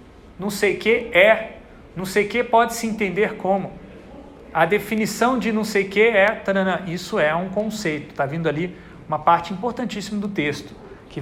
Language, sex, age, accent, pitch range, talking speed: Portuguese, male, 40-59, Brazilian, 160-210 Hz, 180 wpm